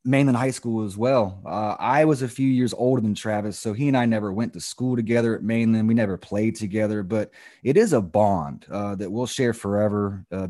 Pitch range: 105-130 Hz